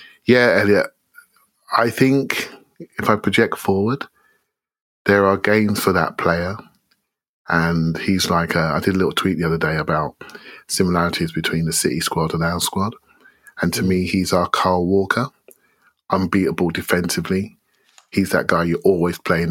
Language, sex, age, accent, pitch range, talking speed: English, male, 30-49, British, 80-100 Hz, 155 wpm